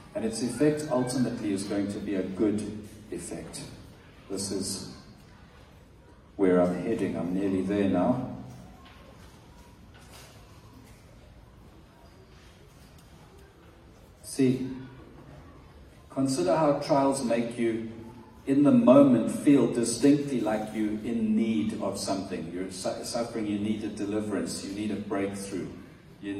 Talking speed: 110 wpm